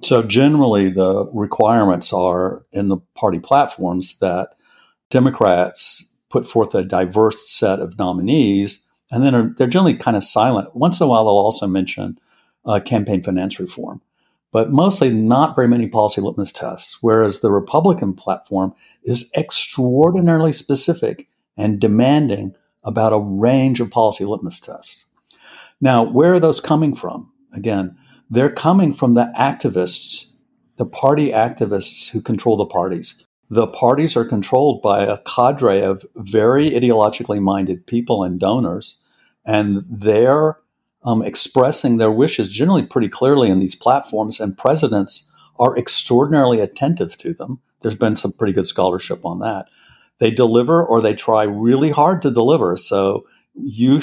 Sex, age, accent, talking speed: male, 50-69, American, 145 wpm